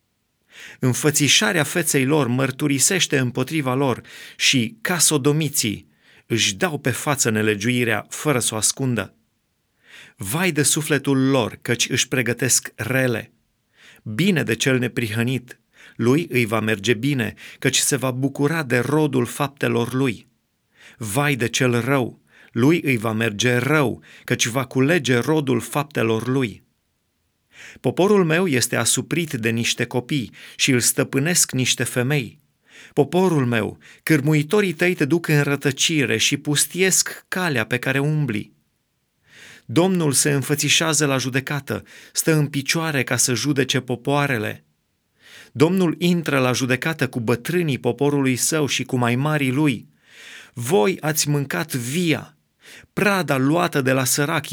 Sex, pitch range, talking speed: male, 120-150 Hz, 130 wpm